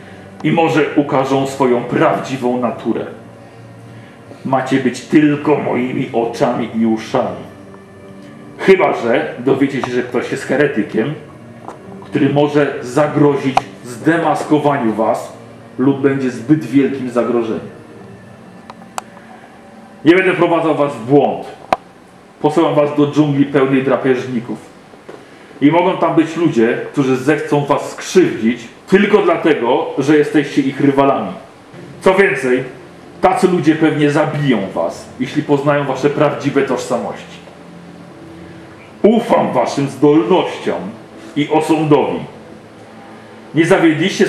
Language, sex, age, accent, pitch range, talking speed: Polish, male, 40-59, native, 120-150 Hz, 105 wpm